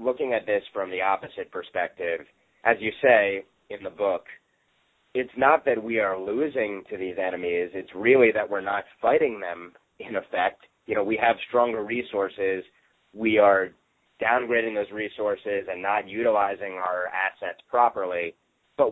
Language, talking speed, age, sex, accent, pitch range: English, 155 wpm, 30-49, male, American, 95-120 Hz